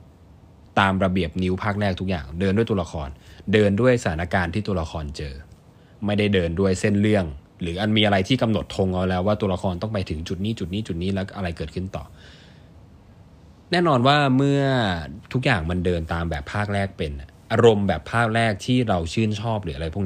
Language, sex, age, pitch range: Thai, male, 20-39, 85-105 Hz